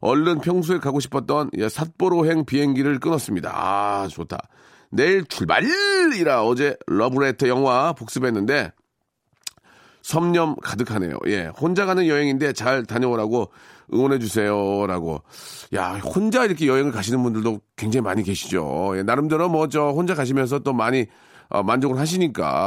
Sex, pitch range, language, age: male, 110-175 Hz, Korean, 40-59